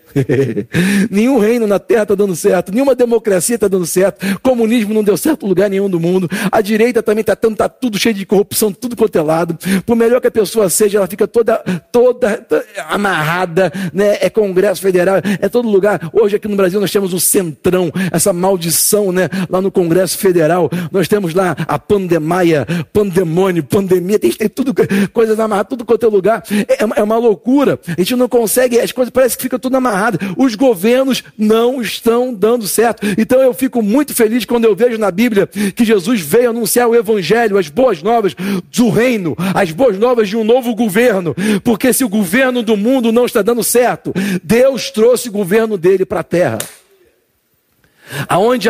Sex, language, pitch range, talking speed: male, Portuguese, 190-235 Hz, 185 wpm